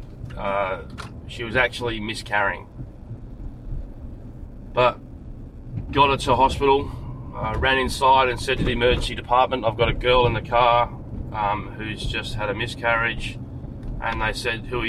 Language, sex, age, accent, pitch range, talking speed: English, male, 20-39, Australian, 115-125 Hz, 150 wpm